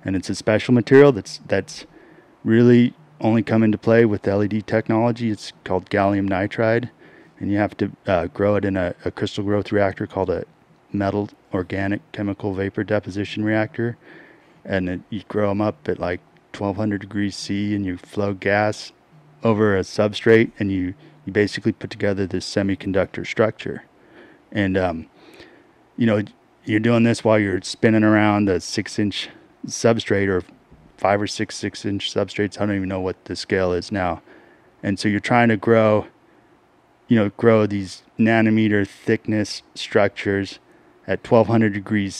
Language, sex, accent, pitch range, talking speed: English, male, American, 100-110 Hz, 160 wpm